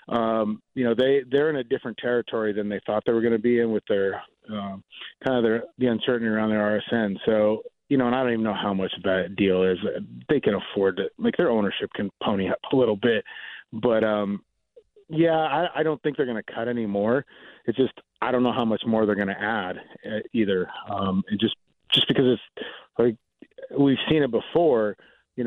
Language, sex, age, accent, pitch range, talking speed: English, male, 30-49, American, 105-125 Hz, 220 wpm